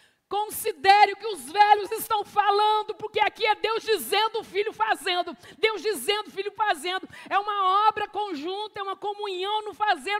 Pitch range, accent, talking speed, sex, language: 315-410 Hz, Brazilian, 170 wpm, female, Portuguese